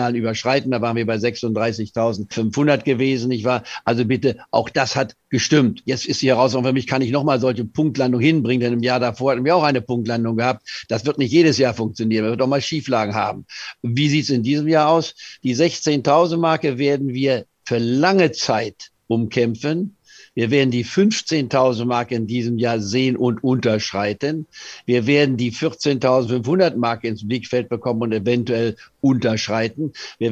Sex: male